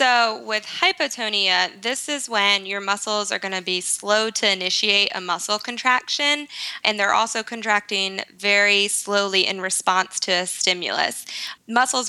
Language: English